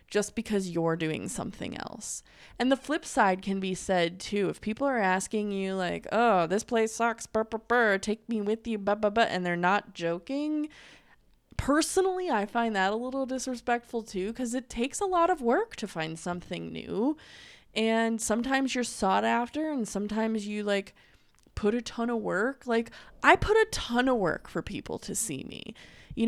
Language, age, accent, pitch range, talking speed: English, 20-39, American, 200-265 Hz, 190 wpm